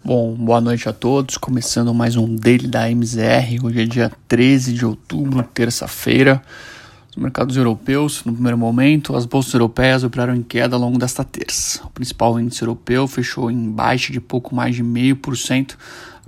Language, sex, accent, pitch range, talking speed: Portuguese, male, Brazilian, 115-130 Hz, 170 wpm